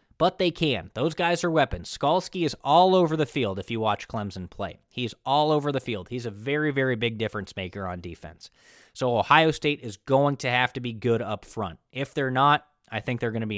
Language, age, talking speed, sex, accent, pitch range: English, 20-39, 235 wpm, male, American, 110-165 Hz